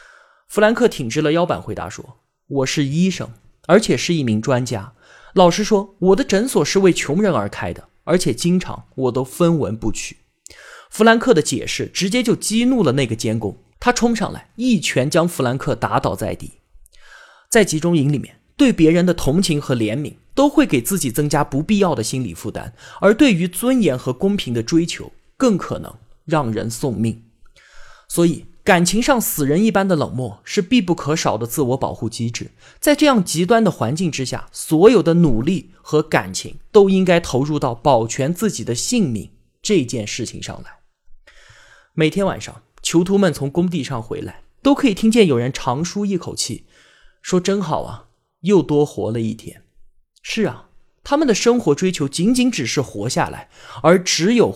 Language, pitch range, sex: Chinese, 130-200 Hz, male